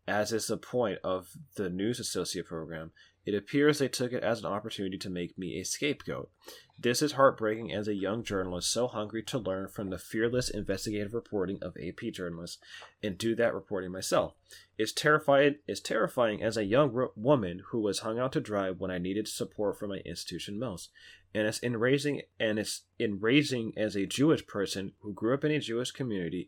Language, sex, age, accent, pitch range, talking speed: English, male, 30-49, American, 95-120 Hz, 195 wpm